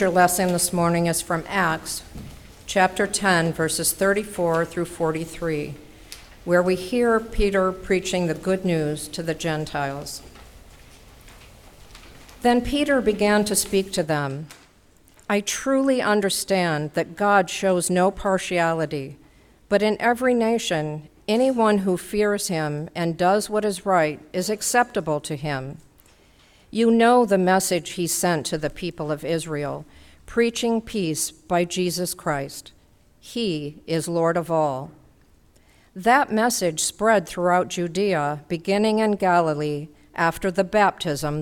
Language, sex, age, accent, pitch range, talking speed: English, female, 50-69, American, 155-200 Hz, 125 wpm